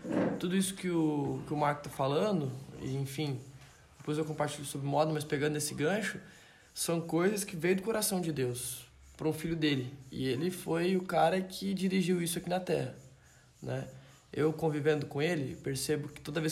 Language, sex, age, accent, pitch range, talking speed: Gujarati, male, 20-39, Brazilian, 145-175 Hz, 180 wpm